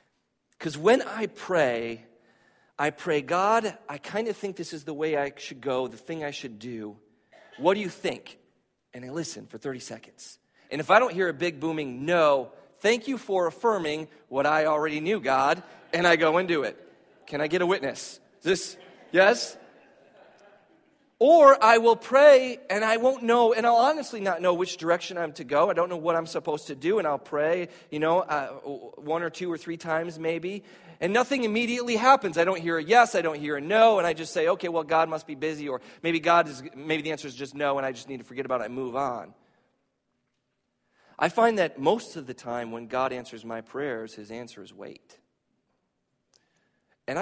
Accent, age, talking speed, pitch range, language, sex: American, 40-59, 210 wpm, 140-195 Hz, English, male